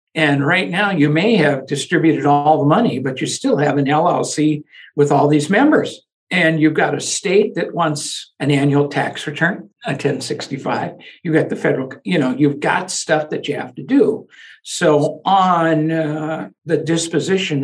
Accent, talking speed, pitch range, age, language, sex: American, 175 wpm, 145-175 Hz, 60-79, English, male